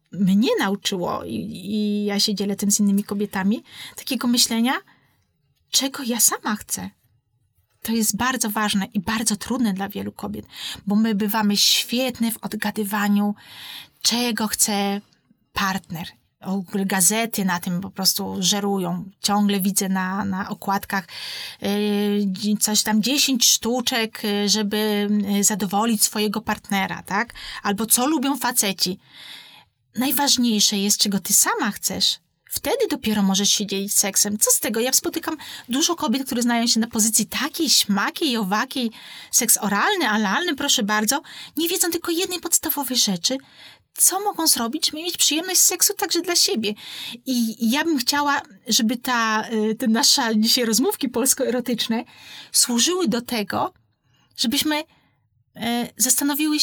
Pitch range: 200-255 Hz